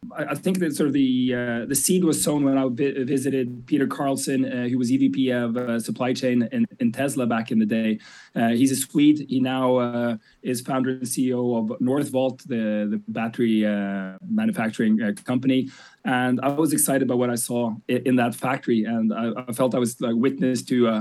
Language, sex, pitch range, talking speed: English, male, 120-140 Hz, 205 wpm